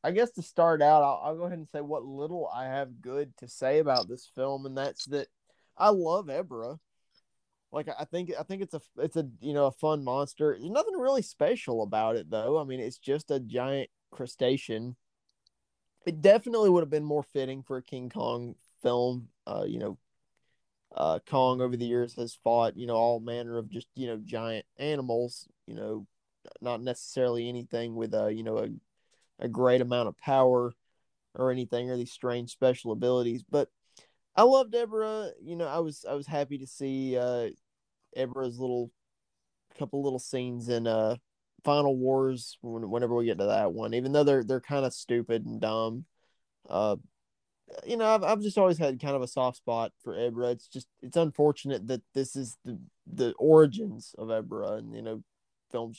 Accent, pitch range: American, 120-150 Hz